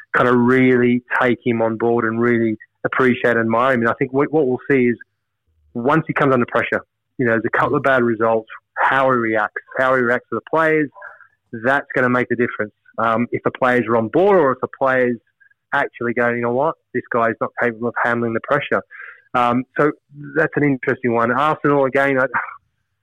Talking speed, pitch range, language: 215 wpm, 115-130 Hz, English